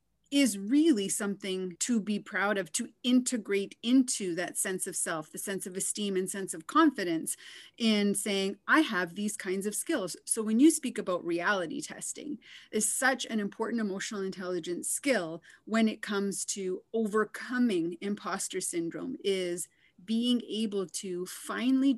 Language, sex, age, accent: English, female, 30-49, American